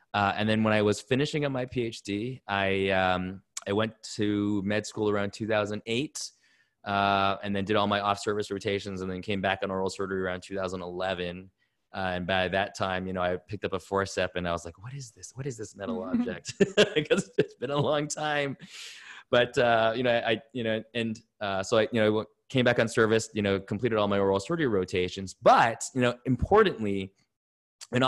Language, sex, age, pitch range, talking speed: English, male, 20-39, 95-120 Hz, 205 wpm